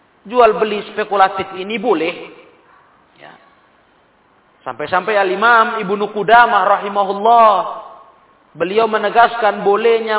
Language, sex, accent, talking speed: Indonesian, male, native, 75 wpm